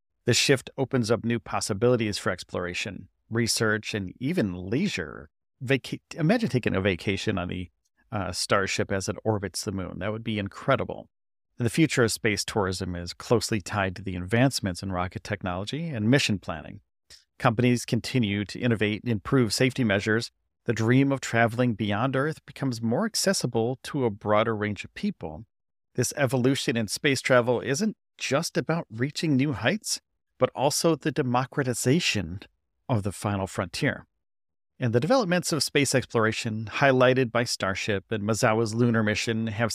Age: 40-59